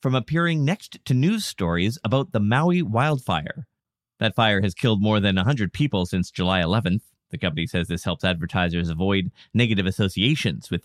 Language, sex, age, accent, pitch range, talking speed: English, male, 30-49, American, 95-140 Hz, 170 wpm